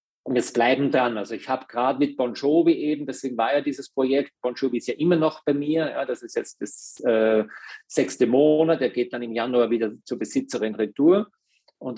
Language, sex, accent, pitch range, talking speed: German, male, German, 115-145 Hz, 215 wpm